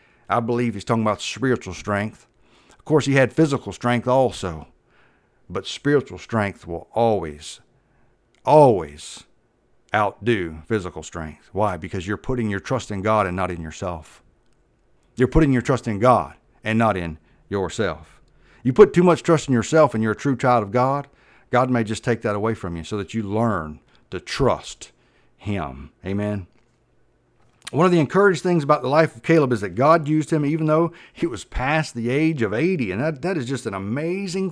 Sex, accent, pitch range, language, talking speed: male, American, 105-145 Hz, English, 185 wpm